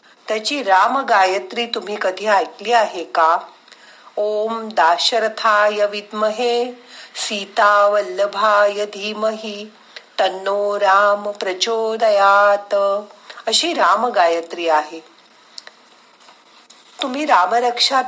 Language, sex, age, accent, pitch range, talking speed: Marathi, female, 50-69, native, 195-240 Hz, 55 wpm